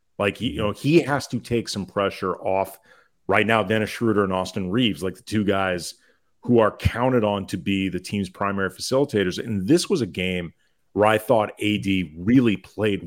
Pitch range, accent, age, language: 95-115 Hz, American, 40-59, English